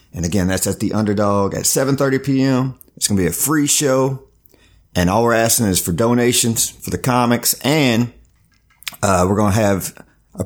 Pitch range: 95-120 Hz